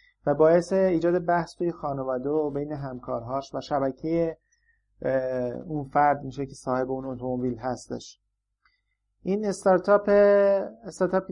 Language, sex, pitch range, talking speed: Persian, male, 150-185 Hz, 115 wpm